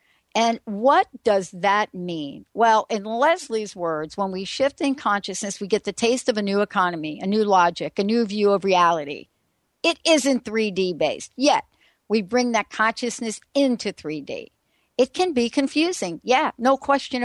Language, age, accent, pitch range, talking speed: English, 60-79, American, 190-250 Hz, 165 wpm